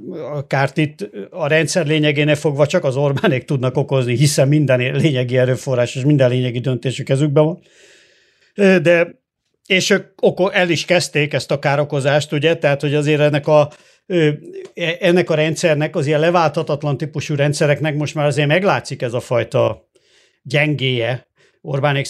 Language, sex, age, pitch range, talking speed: Hungarian, male, 50-69, 140-165 Hz, 145 wpm